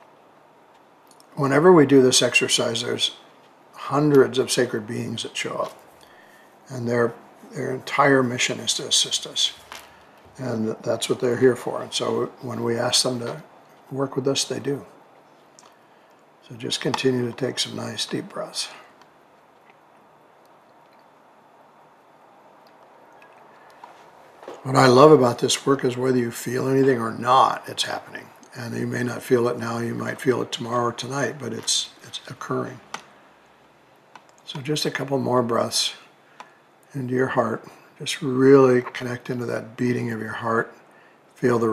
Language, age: English, 60-79